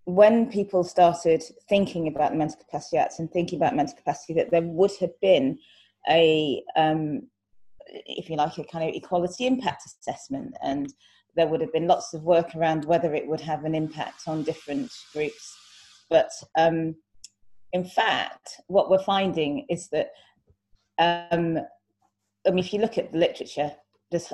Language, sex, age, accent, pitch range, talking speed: English, female, 30-49, British, 155-190 Hz, 165 wpm